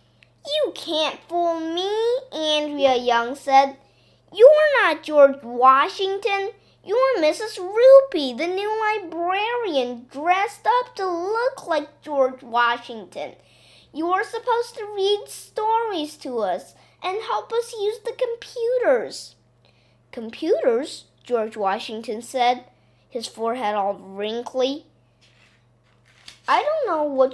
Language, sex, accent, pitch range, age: Chinese, female, American, 215-350 Hz, 20-39